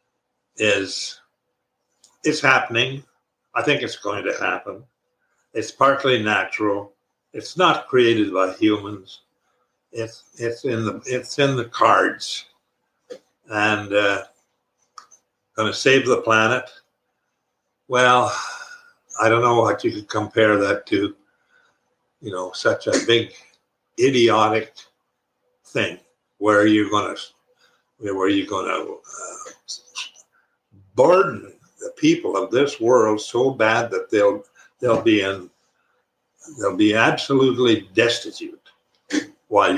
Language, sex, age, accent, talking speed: English, male, 60-79, American, 115 wpm